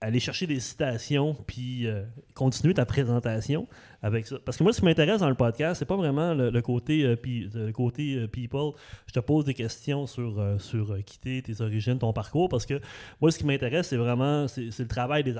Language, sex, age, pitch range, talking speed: French, male, 30-49, 120-155 Hz, 230 wpm